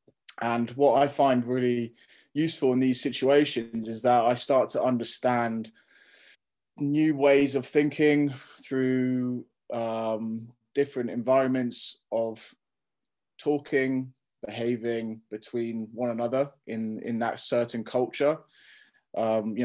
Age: 20-39